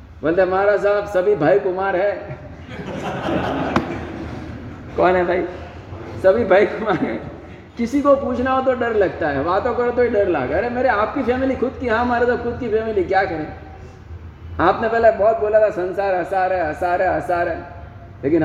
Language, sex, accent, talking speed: Hindi, male, native, 180 wpm